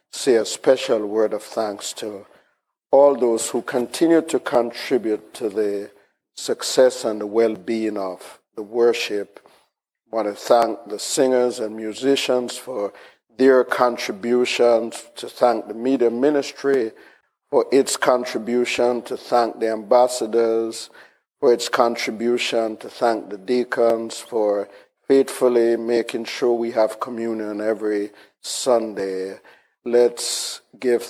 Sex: male